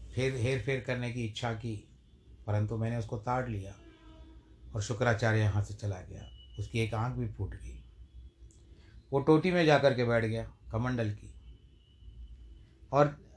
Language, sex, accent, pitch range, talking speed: Hindi, male, native, 75-125 Hz, 155 wpm